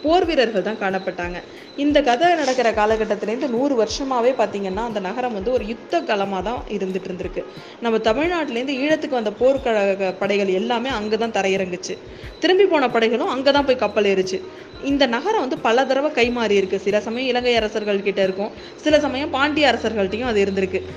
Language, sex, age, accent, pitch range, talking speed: Tamil, female, 20-39, native, 195-270 Hz, 155 wpm